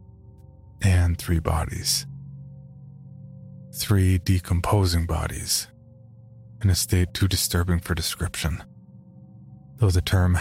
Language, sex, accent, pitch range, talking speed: English, male, American, 85-110 Hz, 90 wpm